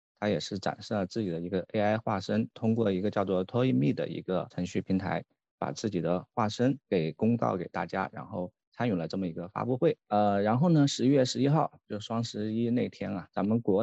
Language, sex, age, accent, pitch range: Chinese, male, 20-39, native, 95-120 Hz